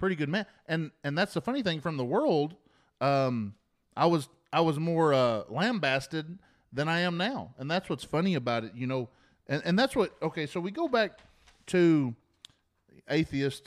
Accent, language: American, English